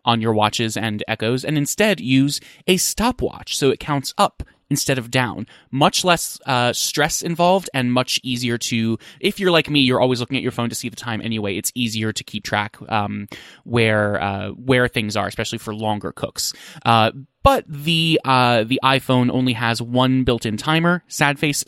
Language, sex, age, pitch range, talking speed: English, male, 20-39, 115-145 Hz, 195 wpm